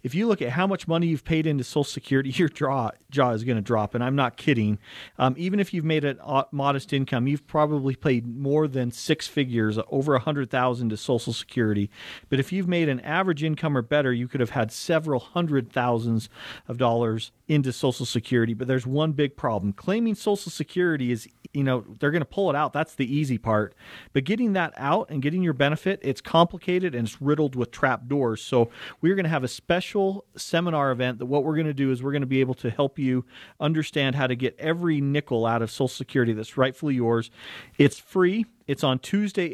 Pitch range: 125-160 Hz